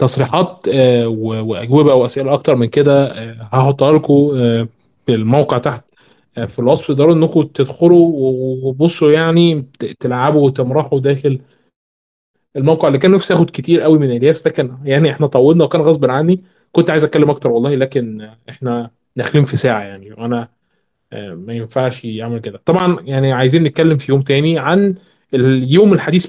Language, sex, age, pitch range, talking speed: Arabic, male, 20-39, 125-150 Hz, 150 wpm